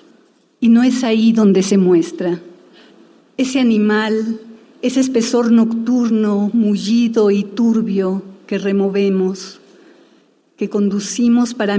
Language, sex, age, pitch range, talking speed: Spanish, female, 40-59, 195-230 Hz, 100 wpm